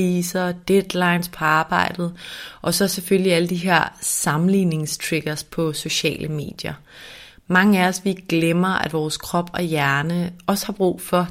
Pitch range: 160-185 Hz